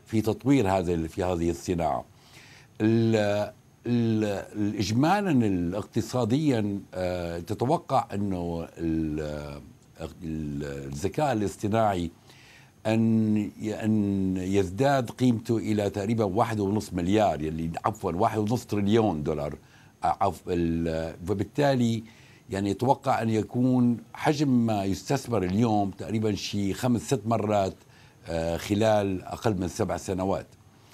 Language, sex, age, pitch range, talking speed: Arabic, male, 60-79, 95-120 Hz, 90 wpm